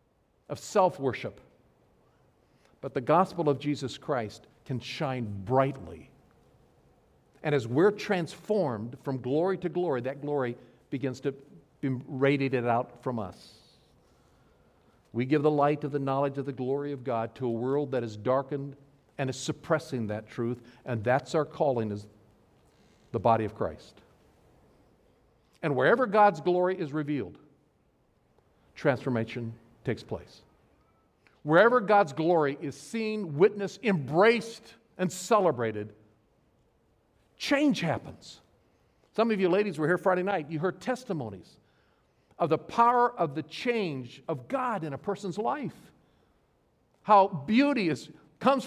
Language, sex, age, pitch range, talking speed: English, male, 50-69, 130-190 Hz, 130 wpm